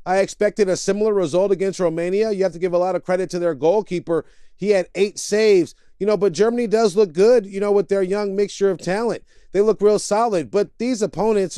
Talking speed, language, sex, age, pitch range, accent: 230 wpm, English, male, 40-59, 170-195 Hz, American